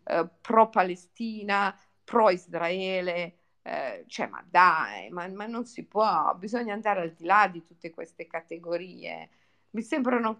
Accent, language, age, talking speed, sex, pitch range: native, Italian, 50-69, 145 wpm, female, 195-275 Hz